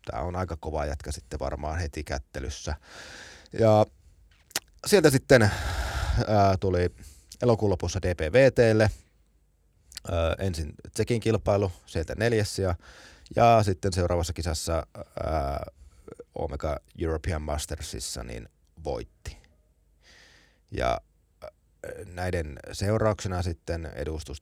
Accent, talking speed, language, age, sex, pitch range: native, 90 wpm, Finnish, 30-49, male, 75-100 Hz